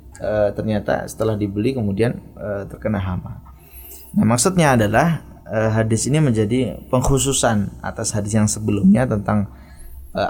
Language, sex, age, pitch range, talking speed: Indonesian, male, 20-39, 100-120 Hz, 130 wpm